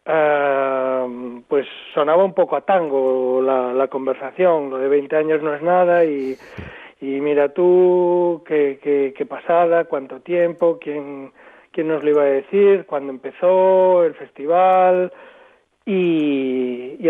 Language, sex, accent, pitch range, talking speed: Spanish, male, Spanish, 140-180 Hz, 140 wpm